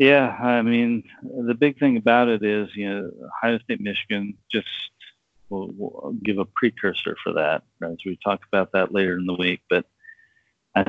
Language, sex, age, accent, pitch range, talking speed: English, male, 40-59, American, 95-110 Hz, 175 wpm